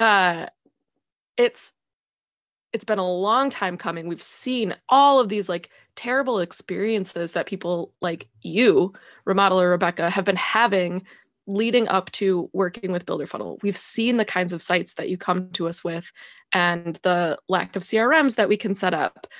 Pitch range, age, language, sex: 180-210 Hz, 20-39, English, female